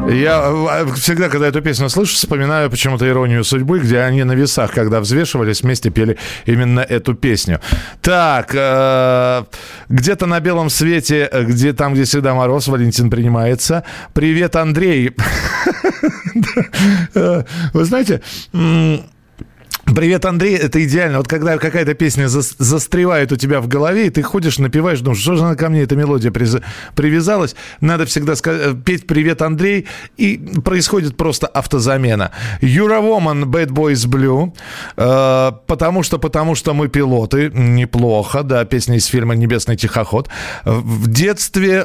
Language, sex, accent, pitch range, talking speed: Russian, male, native, 130-165 Hz, 140 wpm